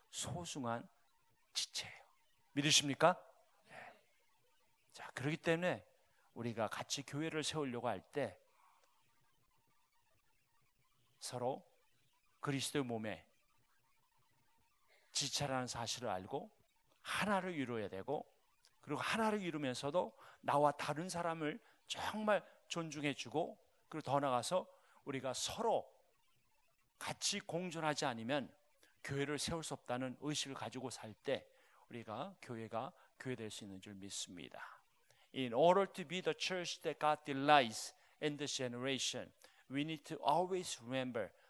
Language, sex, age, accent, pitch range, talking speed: English, male, 40-59, Korean, 130-175 Hz, 80 wpm